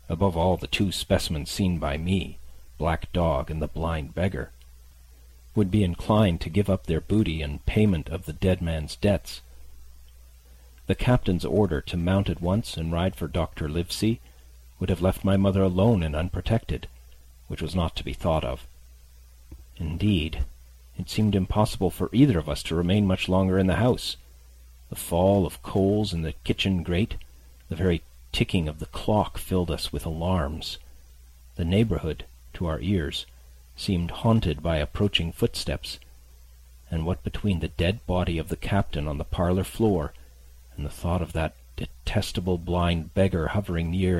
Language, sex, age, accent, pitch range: Korean, male, 40-59, American, 65-95 Hz